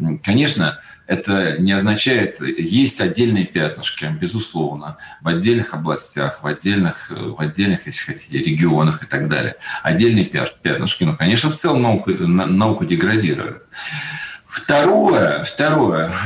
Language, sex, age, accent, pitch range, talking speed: Russian, male, 40-59, native, 95-120 Hz, 120 wpm